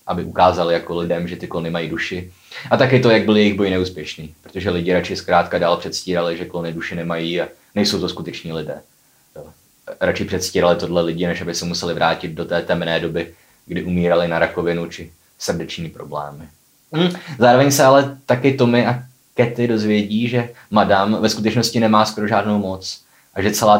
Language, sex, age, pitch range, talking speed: Czech, male, 20-39, 90-125 Hz, 180 wpm